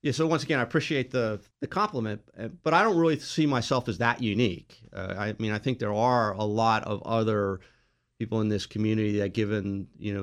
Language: English